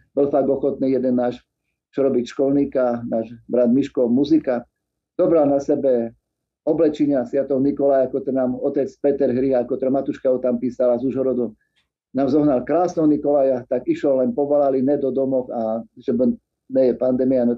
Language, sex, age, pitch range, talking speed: Slovak, male, 50-69, 130-155 Hz, 160 wpm